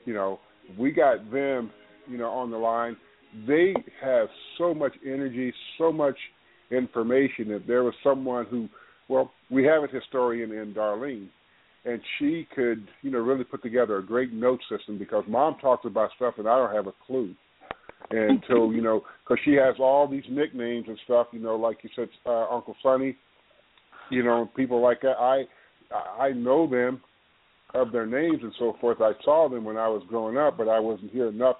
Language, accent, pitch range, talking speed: English, American, 110-130 Hz, 190 wpm